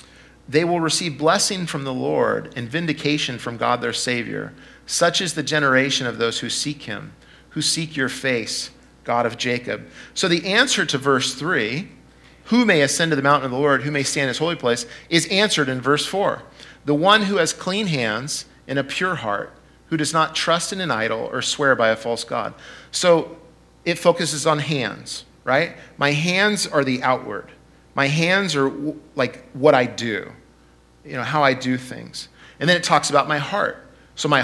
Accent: American